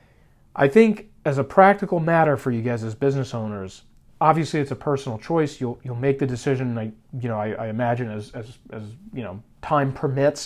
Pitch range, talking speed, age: 120-150 Hz, 200 wpm, 40-59